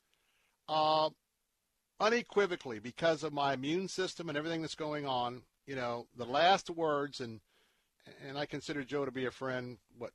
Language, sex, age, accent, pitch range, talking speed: English, male, 50-69, American, 120-145 Hz, 160 wpm